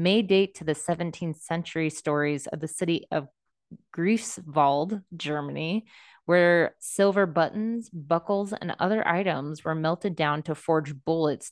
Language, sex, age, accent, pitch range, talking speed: English, female, 20-39, American, 155-180 Hz, 135 wpm